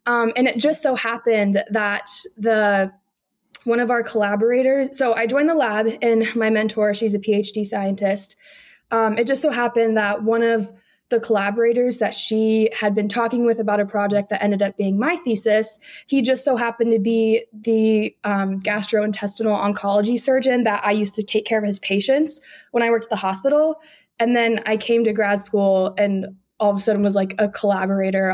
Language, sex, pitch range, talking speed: English, female, 205-240 Hz, 195 wpm